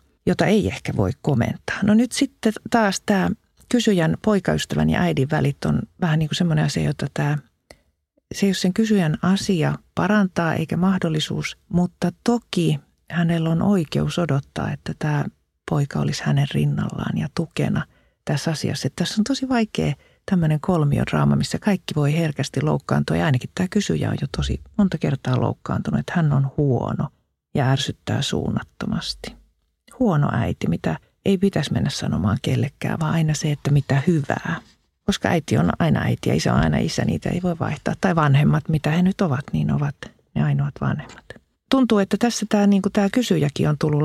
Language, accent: Finnish, native